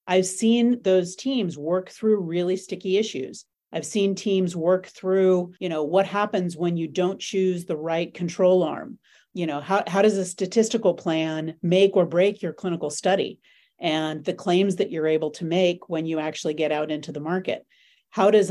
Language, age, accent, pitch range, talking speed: English, 40-59, American, 160-195 Hz, 190 wpm